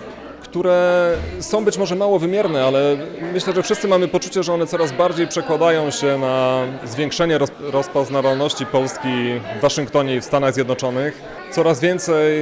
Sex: male